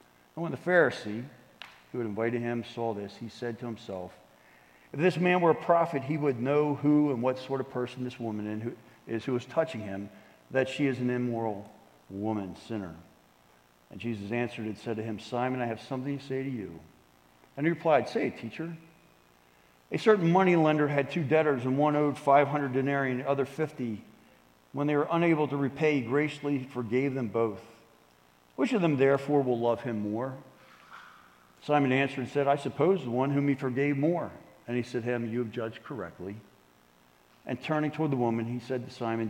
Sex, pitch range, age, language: male, 110-140 Hz, 50-69, English